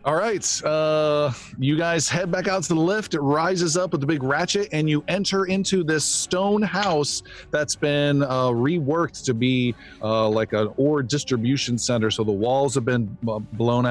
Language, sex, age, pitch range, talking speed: English, male, 40-59, 120-170 Hz, 185 wpm